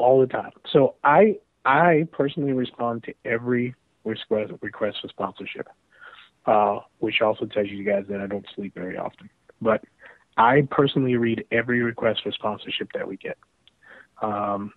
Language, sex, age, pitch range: English, male, 30-49, 105-125 Hz